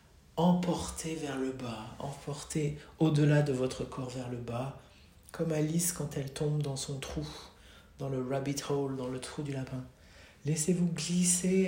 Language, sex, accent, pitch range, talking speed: French, male, French, 110-145 Hz, 160 wpm